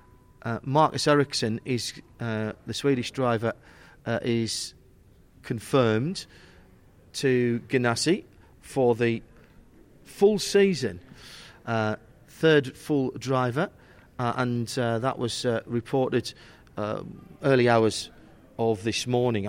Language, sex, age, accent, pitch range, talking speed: English, male, 40-59, British, 115-150 Hz, 105 wpm